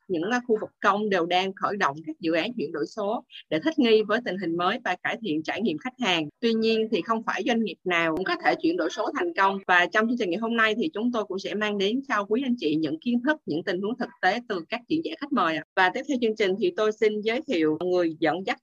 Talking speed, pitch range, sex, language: 285 wpm, 185-235 Hz, female, Vietnamese